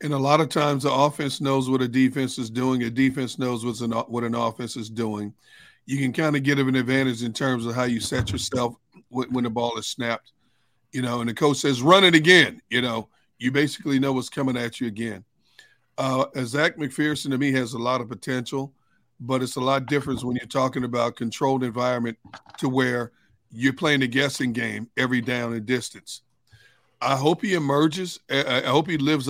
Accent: American